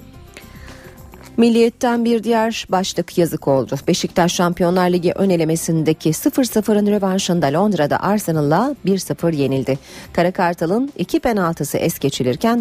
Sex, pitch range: female, 155-215 Hz